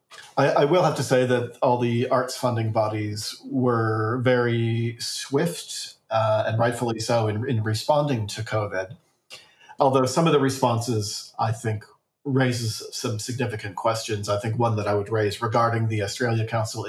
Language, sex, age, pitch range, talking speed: English, male, 40-59, 110-130 Hz, 165 wpm